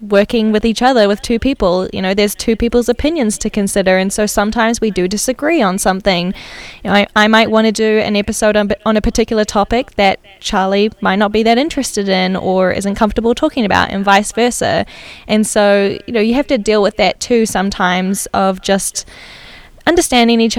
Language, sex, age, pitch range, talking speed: English, female, 10-29, 195-225 Hz, 200 wpm